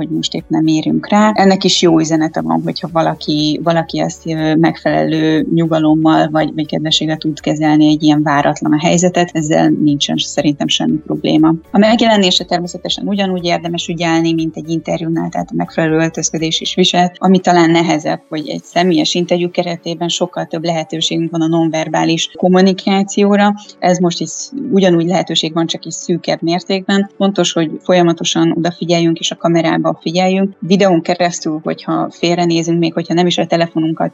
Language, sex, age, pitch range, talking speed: Hungarian, female, 20-39, 155-180 Hz, 160 wpm